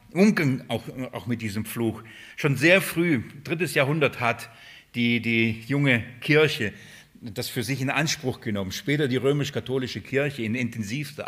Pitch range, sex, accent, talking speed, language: 120-145 Hz, male, German, 145 wpm, German